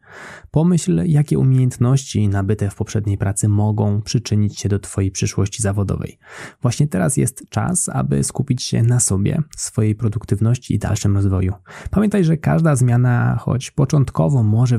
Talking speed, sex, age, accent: 140 wpm, male, 20-39, native